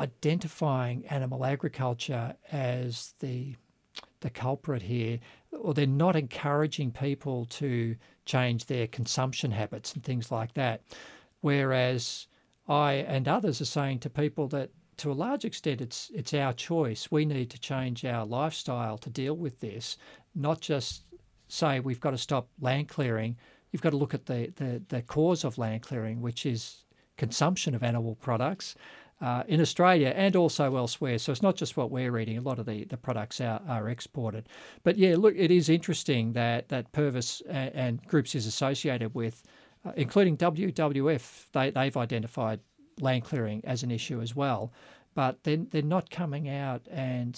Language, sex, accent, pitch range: English, male, Australian, 120-150 Hz